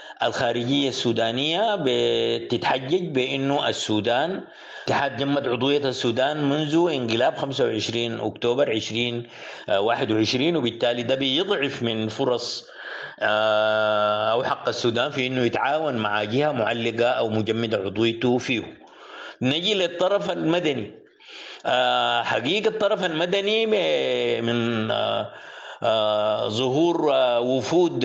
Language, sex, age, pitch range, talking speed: English, male, 50-69, 115-150 Hz, 90 wpm